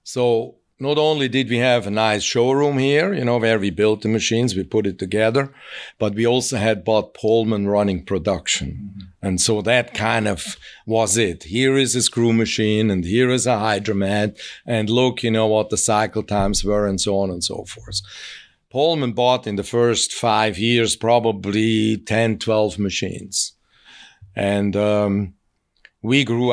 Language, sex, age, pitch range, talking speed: English, male, 50-69, 105-120 Hz, 170 wpm